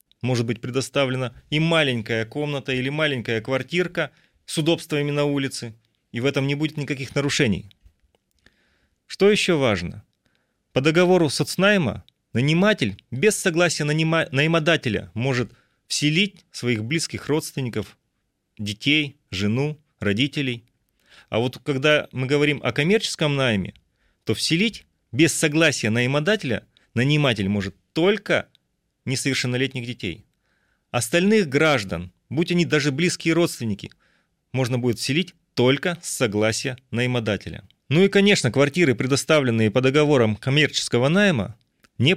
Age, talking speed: 30-49, 115 wpm